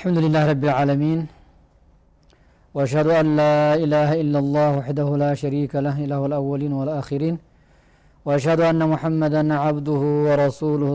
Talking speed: 125 wpm